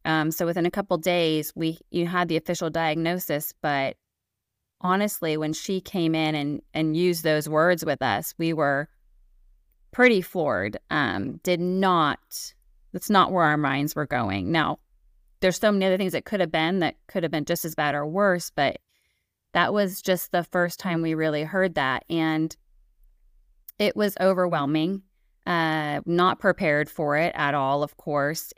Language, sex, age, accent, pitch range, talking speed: English, female, 20-39, American, 155-185 Hz, 170 wpm